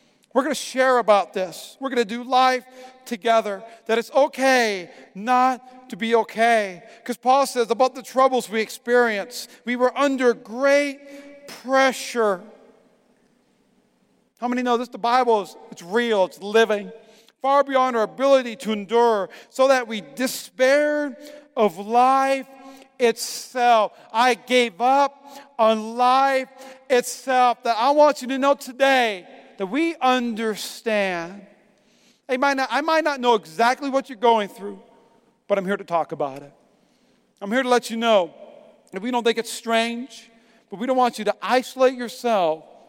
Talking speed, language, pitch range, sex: 150 wpm, English, 210-255 Hz, male